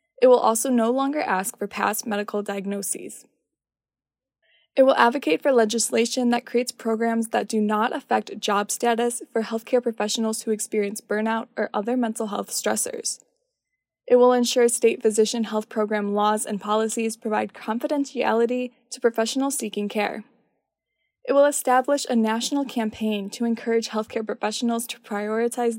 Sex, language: female, English